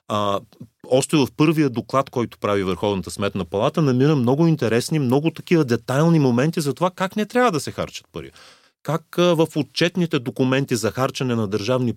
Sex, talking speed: male, 170 wpm